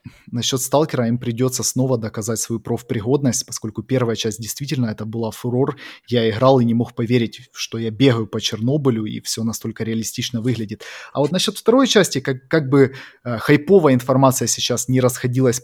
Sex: male